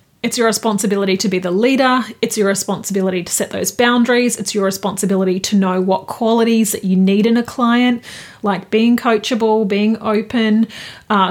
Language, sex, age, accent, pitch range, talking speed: English, female, 30-49, Australian, 200-245 Hz, 175 wpm